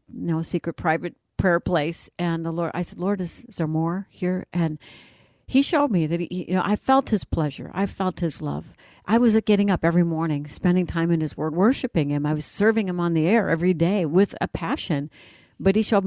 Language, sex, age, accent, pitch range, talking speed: English, female, 60-79, American, 155-195 Hz, 225 wpm